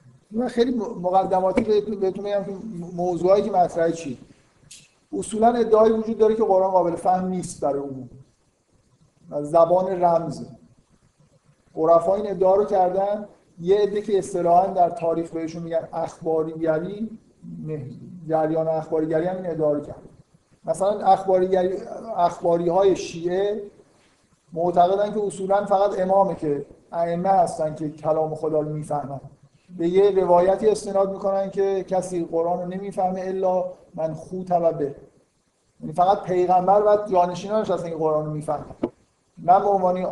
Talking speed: 135 wpm